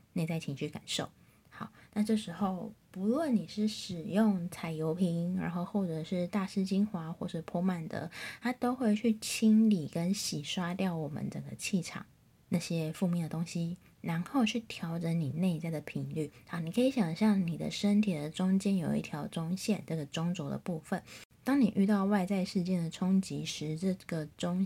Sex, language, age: female, Chinese, 20-39